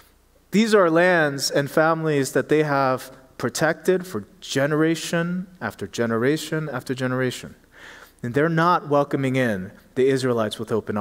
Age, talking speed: 30-49, 130 wpm